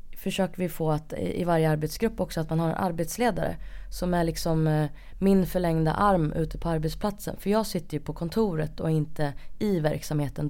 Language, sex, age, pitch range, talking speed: Swedish, female, 20-39, 150-185 Hz, 190 wpm